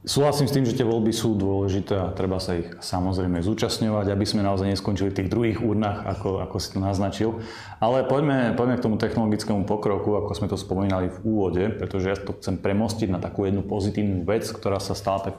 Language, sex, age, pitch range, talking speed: Slovak, male, 30-49, 95-110 Hz, 210 wpm